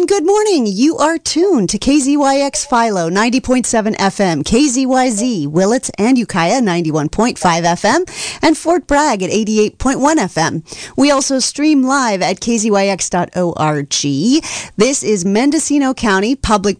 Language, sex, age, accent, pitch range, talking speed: English, female, 40-59, American, 200-270 Hz, 120 wpm